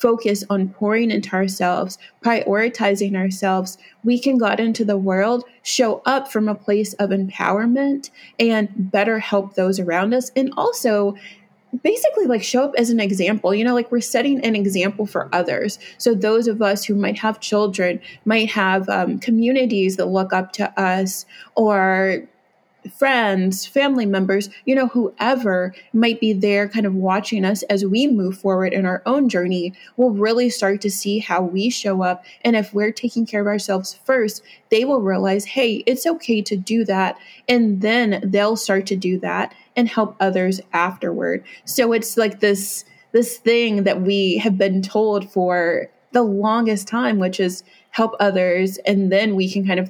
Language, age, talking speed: English, 30-49, 175 wpm